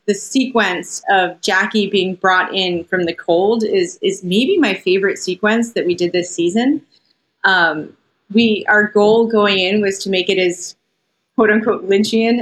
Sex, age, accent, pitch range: female, 30-49, American, 185-230 Hz